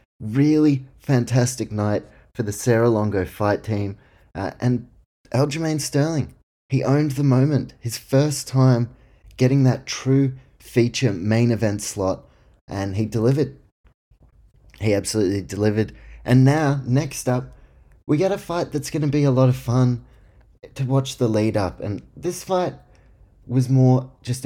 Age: 20-39